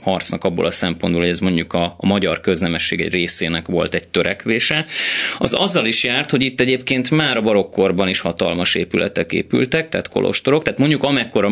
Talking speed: 180 wpm